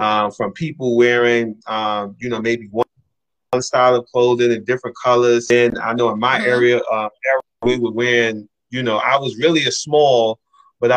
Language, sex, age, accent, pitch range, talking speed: English, male, 30-49, American, 115-140 Hz, 185 wpm